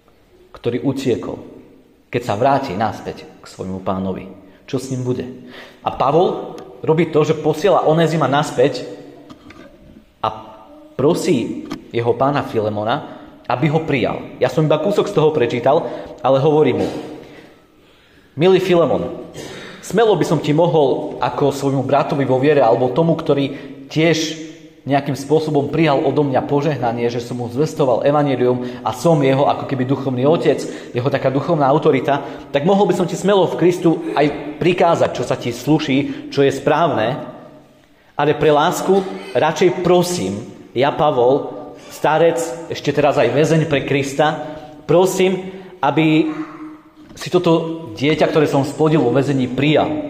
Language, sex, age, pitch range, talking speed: Slovak, male, 40-59, 135-165 Hz, 145 wpm